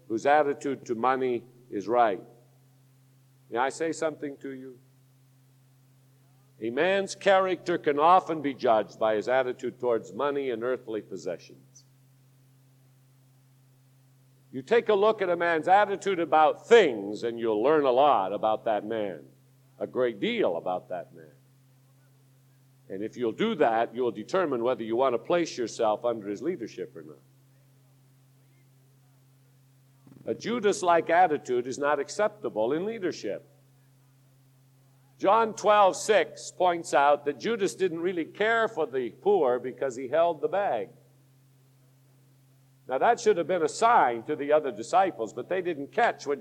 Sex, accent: male, American